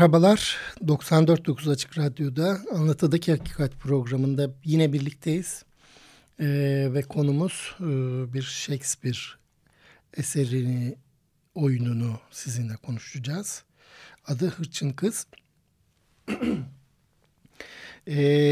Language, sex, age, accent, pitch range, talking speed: Turkish, male, 60-79, native, 135-165 Hz, 75 wpm